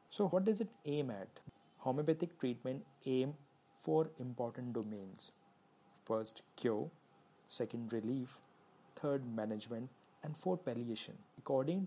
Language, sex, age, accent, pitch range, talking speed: English, male, 40-59, Indian, 120-140 Hz, 110 wpm